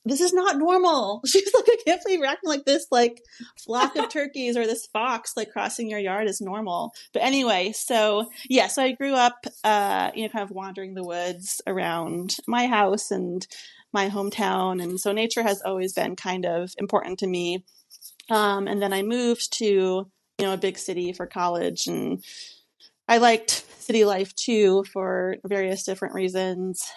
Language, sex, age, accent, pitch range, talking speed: English, female, 30-49, American, 185-225 Hz, 180 wpm